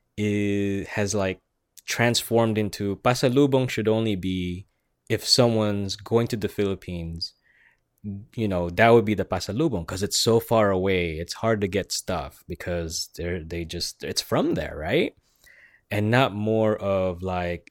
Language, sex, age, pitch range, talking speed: English, male, 20-39, 95-130 Hz, 155 wpm